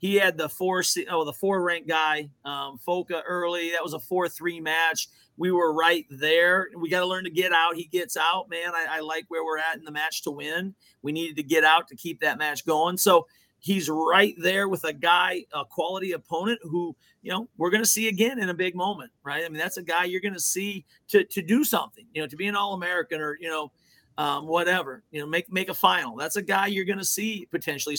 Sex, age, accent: male, 40-59, American